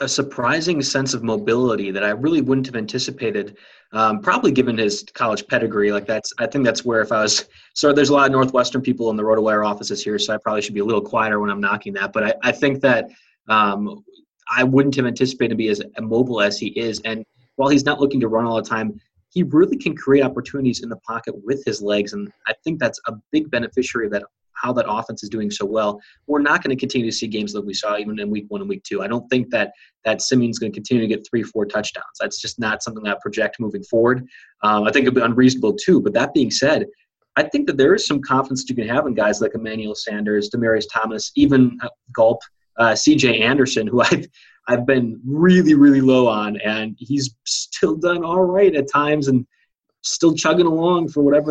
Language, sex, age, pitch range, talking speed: English, male, 20-39, 110-140 Hz, 235 wpm